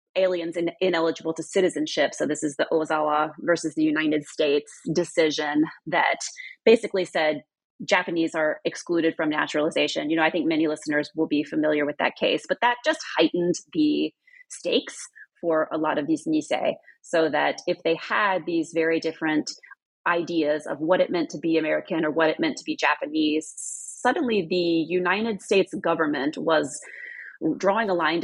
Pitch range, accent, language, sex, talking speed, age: 155-190 Hz, American, English, female, 170 wpm, 30-49